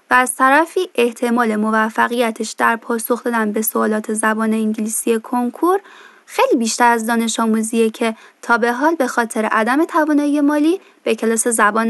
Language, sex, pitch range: Persian, female, 225-275 Hz